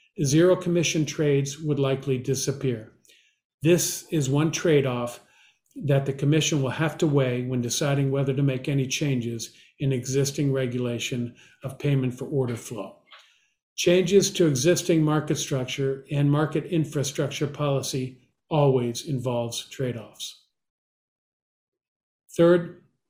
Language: English